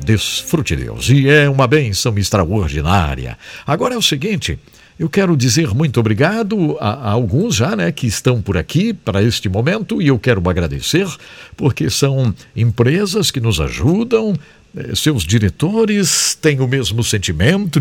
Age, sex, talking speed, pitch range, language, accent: 60-79, male, 150 wpm, 85-135 Hz, English, Brazilian